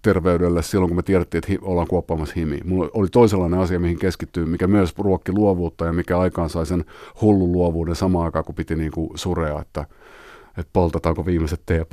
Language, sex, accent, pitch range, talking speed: Finnish, male, native, 85-105 Hz, 180 wpm